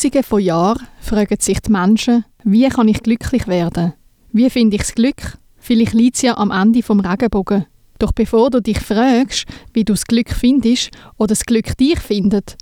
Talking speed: 185 wpm